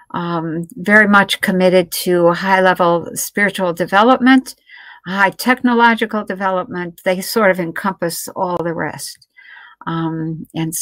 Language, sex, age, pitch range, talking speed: English, female, 60-79, 170-210 Hz, 115 wpm